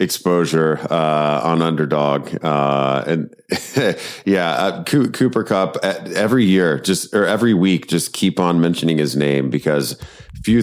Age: 30-49